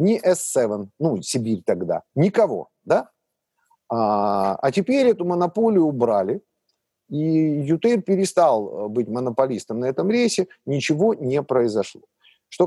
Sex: male